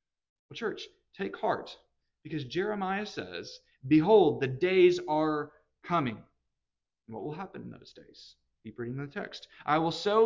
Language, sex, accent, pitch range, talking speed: English, male, American, 140-190 Hz, 140 wpm